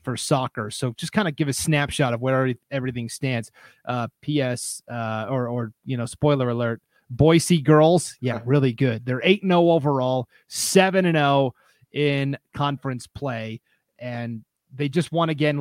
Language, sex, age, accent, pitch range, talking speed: English, male, 30-49, American, 130-150 Hz, 165 wpm